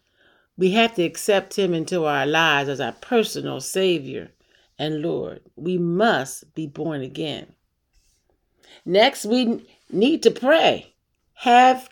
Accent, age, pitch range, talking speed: American, 40-59, 175-255 Hz, 125 wpm